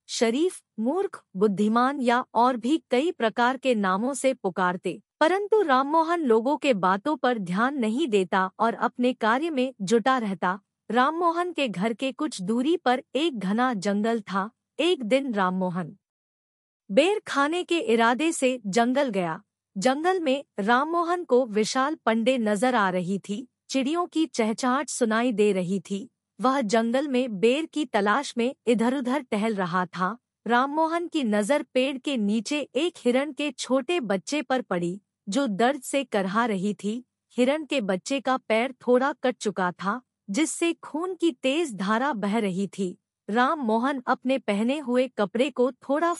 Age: 50-69